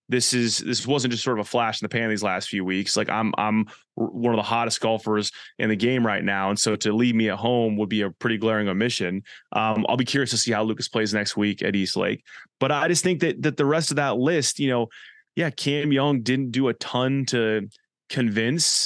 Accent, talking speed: American, 245 wpm